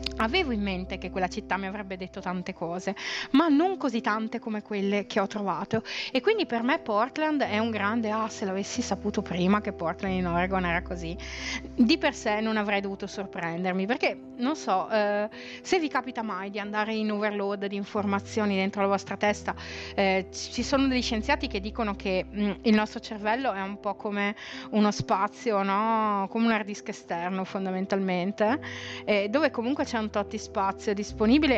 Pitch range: 195-230 Hz